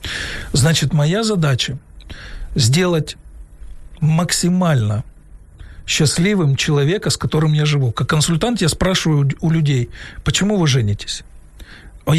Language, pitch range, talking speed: Ukrainian, 125-165 Hz, 100 wpm